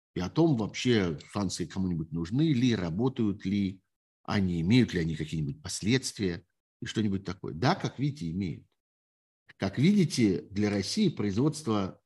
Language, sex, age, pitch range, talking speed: Russian, male, 50-69, 90-130 Hz, 140 wpm